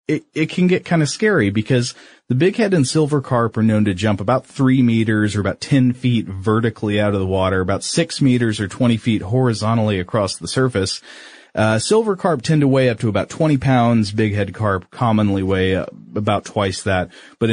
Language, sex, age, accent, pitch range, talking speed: English, male, 30-49, American, 95-125 Hz, 205 wpm